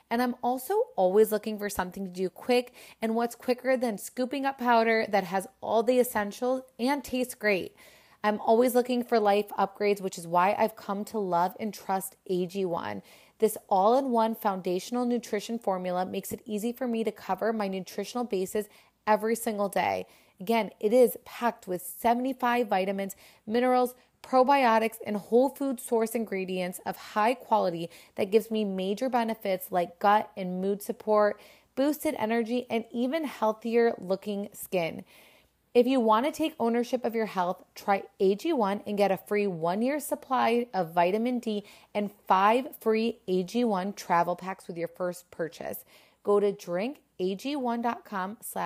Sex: female